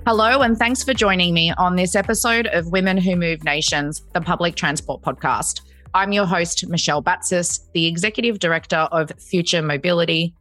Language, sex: English, female